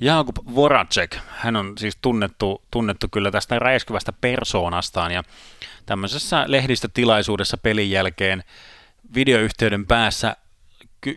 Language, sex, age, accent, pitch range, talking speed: Finnish, male, 30-49, native, 95-115 Hz, 100 wpm